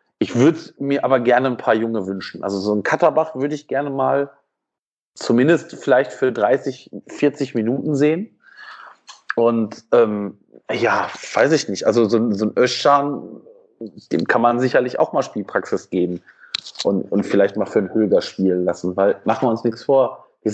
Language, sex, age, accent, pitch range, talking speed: German, male, 30-49, German, 110-135 Hz, 170 wpm